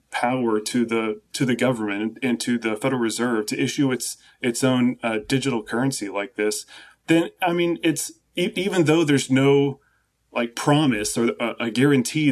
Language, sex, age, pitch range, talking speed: English, male, 20-39, 115-140 Hz, 175 wpm